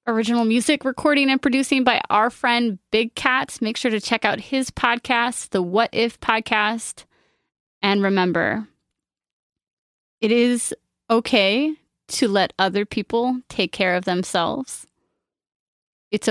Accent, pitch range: American, 190-235 Hz